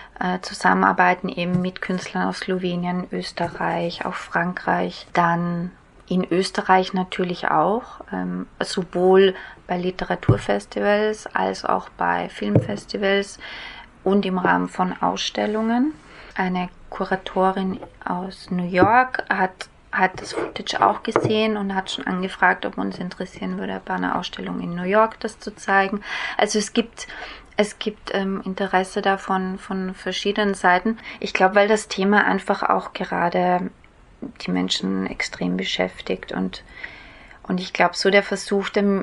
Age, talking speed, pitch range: 20-39, 130 wpm, 180-205 Hz